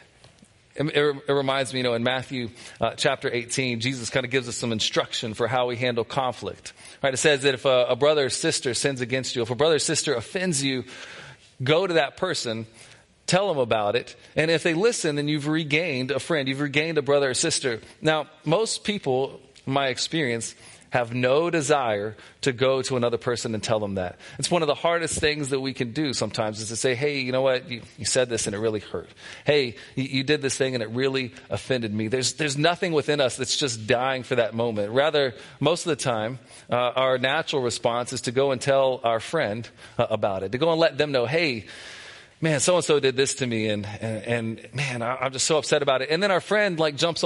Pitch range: 120-155 Hz